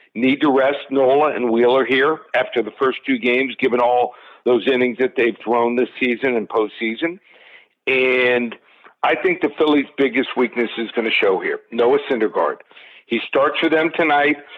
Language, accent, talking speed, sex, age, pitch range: English, American, 175 wpm, male, 50-69, 125-155 Hz